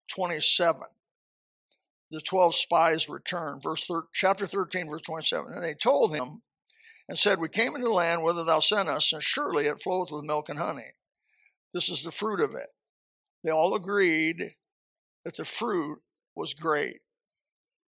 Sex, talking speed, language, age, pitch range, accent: male, 160 wpm, English, 60-79, 165-195 Hz, American